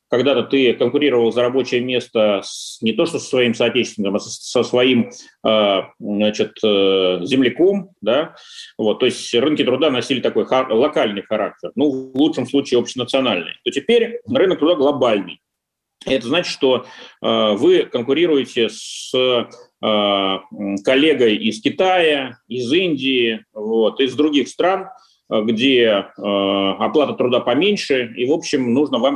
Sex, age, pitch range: male, 30-49, 115-180 Hz